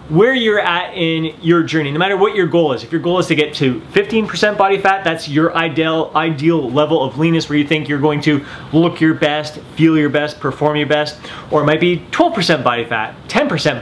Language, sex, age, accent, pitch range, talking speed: English, male, 30-49, American, 150-185 Hz, 225 wpm